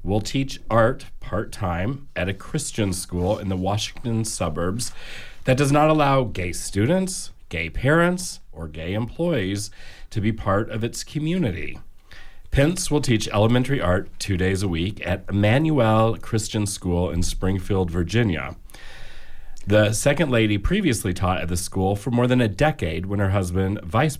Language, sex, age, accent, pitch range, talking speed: English, male, 40-59, American, 90-115 Hz, 155 wpm